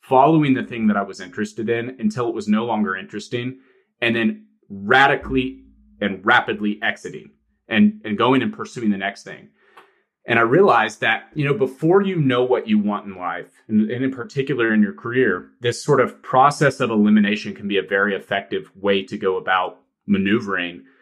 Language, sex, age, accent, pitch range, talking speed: English, male, 30-49, American, 105-155 Hz, 185 wpm